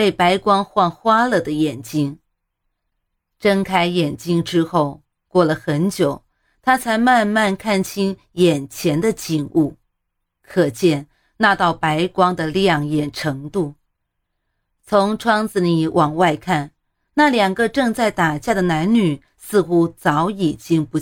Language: Chinese